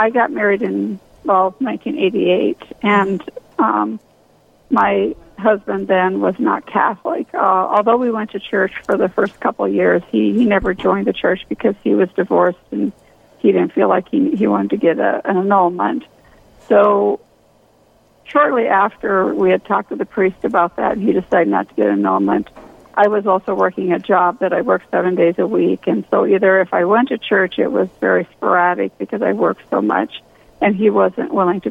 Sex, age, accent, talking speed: female, 40-59, American, 195 wpm